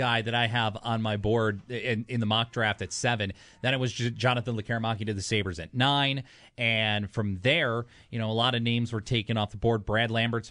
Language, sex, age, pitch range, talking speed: English, male, 30-49, 110-135 Hz, 230 wpm